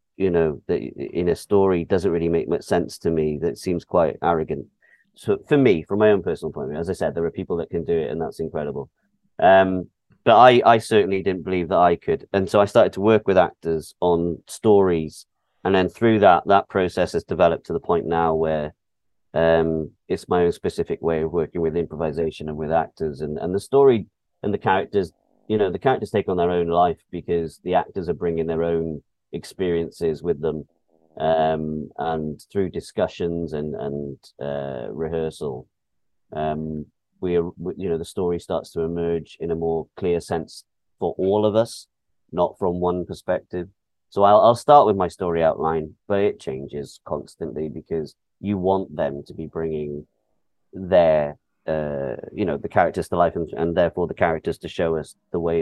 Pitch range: 80-90 Hz